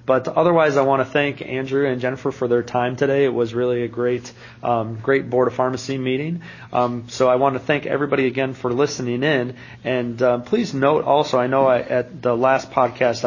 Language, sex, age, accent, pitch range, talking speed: English, male, 30-49, American, 120-135 Hz, 215 wpm